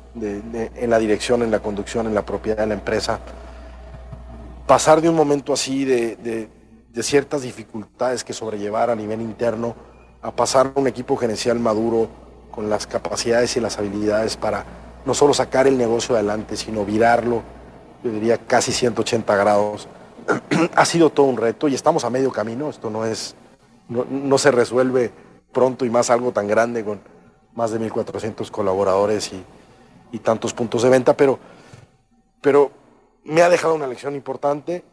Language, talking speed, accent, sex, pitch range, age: English, 165 wpm, Mexican, male, 110-130 Hz, 40-59